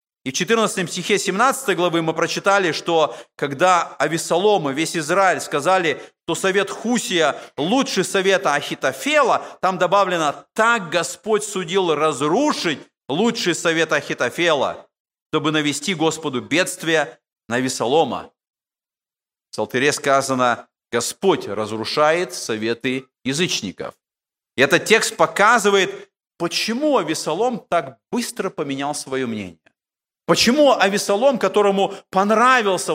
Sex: male